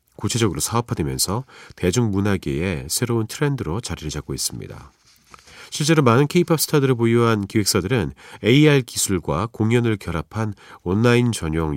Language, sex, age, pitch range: Korean, male, 40-59, 90-135 Hz